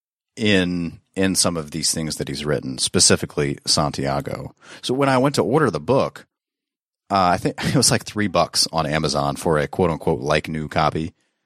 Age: 30-49